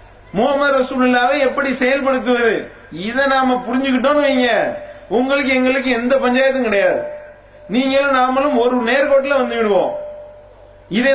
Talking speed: 110 wpm